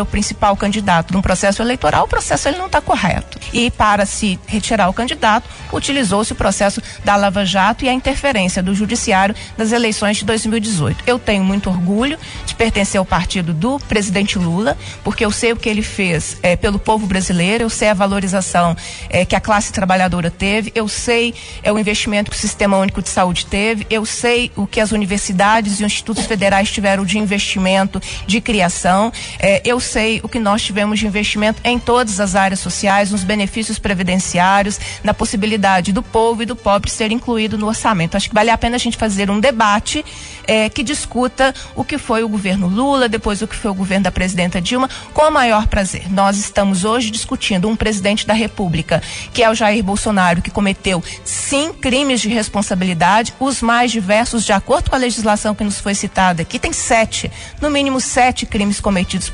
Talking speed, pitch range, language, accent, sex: 195 wpm, 195-230 Hz, Portuguese, Brazilian, female